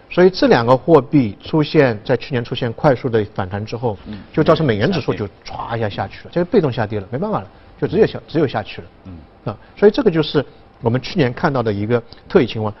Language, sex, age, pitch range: Chinese, male, 50-69, 110-160 Hz